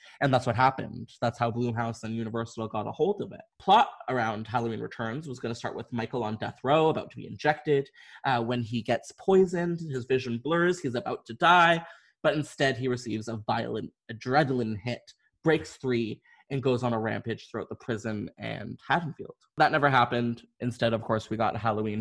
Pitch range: 115-150 Hz